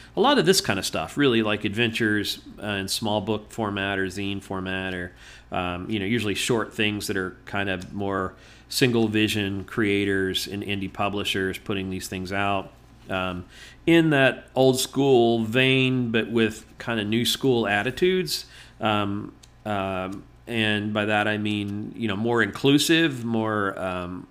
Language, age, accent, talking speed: English, 40-59, American, 160 wpm